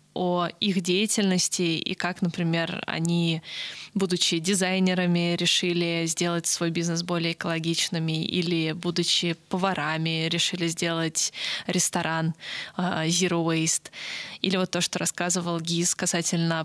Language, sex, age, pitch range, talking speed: Russian, female, 20-39, 165-185 Hz, 110 wpm